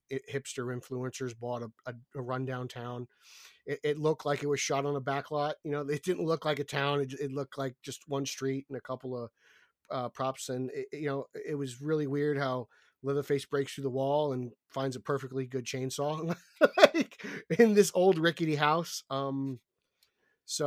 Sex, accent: male, American